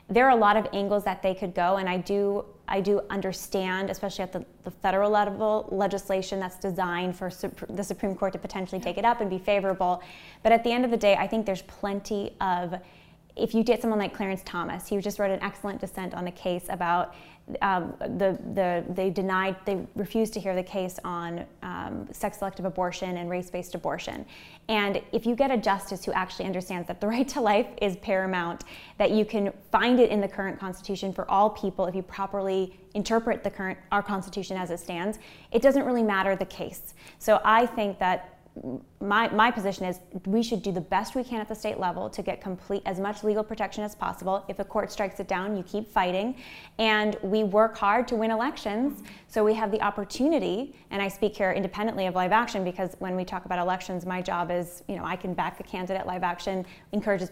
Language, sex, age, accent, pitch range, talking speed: English, female, 10-29, American, 185-210 Hz, 215 wpm